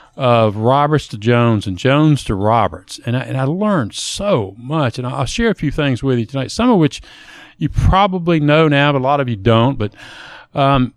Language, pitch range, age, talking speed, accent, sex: English, 120-155 Hz, 40-59, 210 wpm, American, male